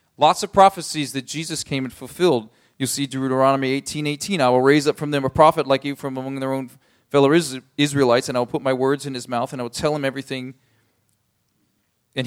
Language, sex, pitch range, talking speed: English, male, 135-175 Hz, 220 wpm